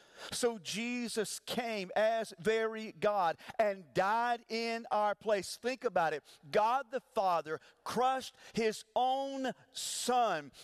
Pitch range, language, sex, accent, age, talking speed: 175-250 Hz, English, male, American, 40-59, 120 wpm